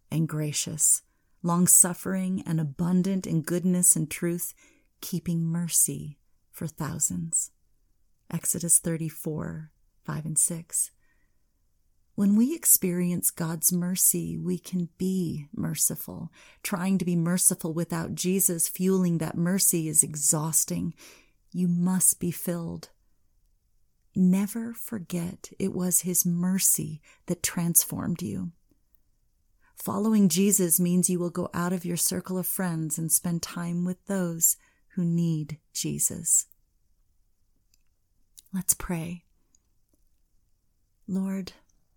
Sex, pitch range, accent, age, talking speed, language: female, 160-185 Hz, American, 30-49, 105 wpm, English